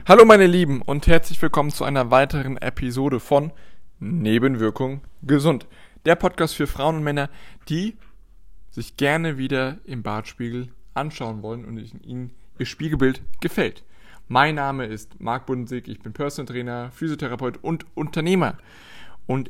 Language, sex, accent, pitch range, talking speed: German, male, German, 110-140 Hz, 140 wpm